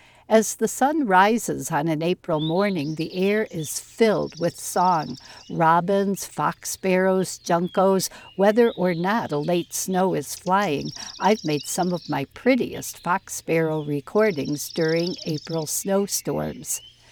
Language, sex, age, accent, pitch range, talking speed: English, female, 60-79, American, 165-210 Hz, 135 wpm